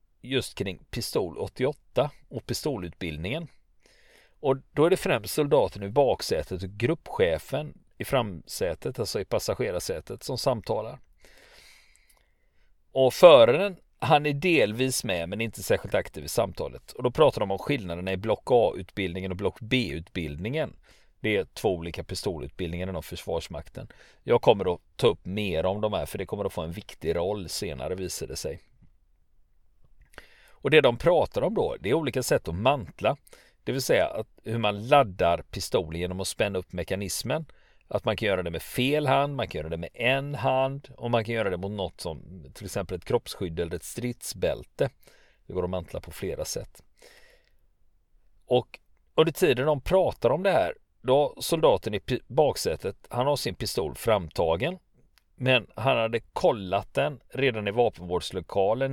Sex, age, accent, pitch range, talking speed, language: male, 40-59, native, 95-145 Hz, 165 wpm, Swedish